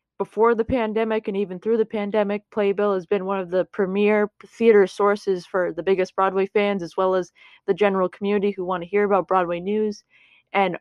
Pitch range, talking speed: 180-205 Hz, 200 wpm